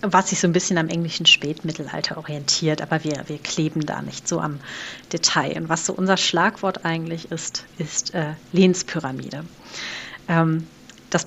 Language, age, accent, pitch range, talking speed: German, 30-49, German, 155-185 Hz, 160 wpm